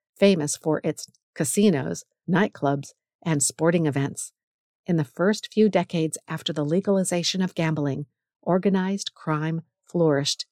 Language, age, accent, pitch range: English, 50-69, American, 150-200 Hz